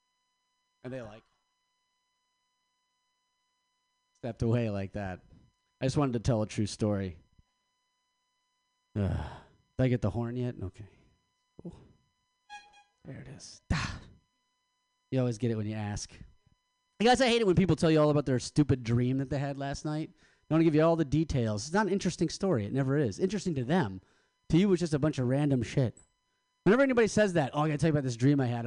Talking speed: 205 wpm